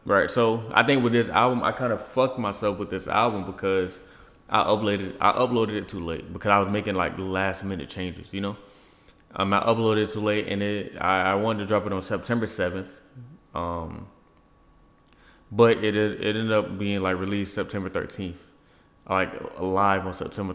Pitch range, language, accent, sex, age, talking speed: 95-110 Hz, English, American, male, 20-39, 190 wpm